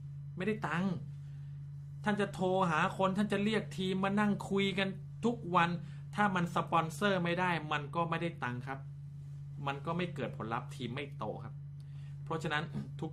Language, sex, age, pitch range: Thai, male, 30-49, 130-145 Hz